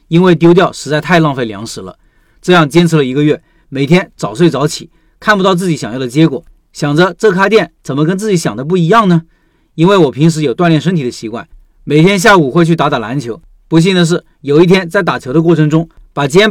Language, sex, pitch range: Chinese, male, 145-180 Hz